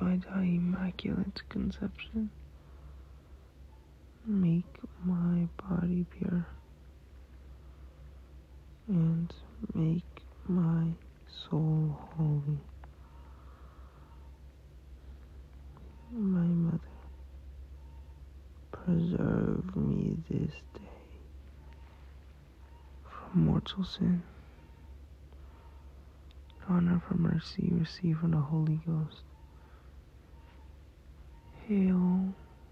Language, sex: English, male